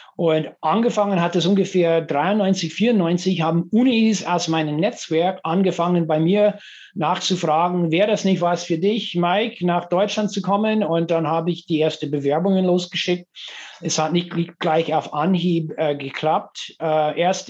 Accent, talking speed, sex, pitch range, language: German, 155 wpm, male, 155-185 Hz, German